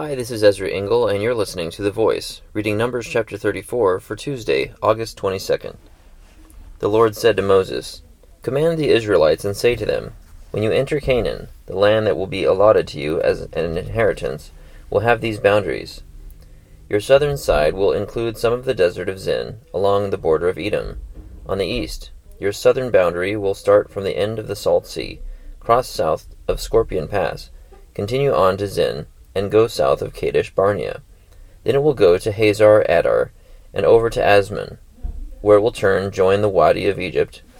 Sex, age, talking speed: male, 30-49, 185 wpm